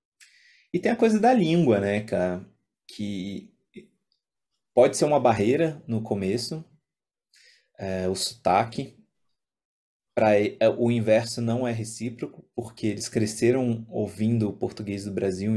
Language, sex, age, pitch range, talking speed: Portuguese, male, 20-39, 105-125 Hz, 125 wpm